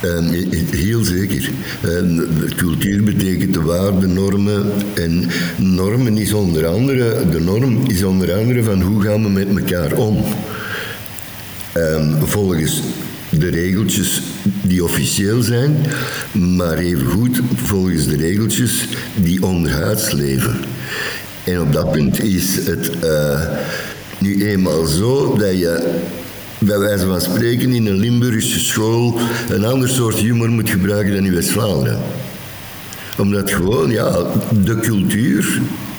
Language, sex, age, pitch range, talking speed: Dutch, male, 60-79, 85-105 Hz, 125 wpm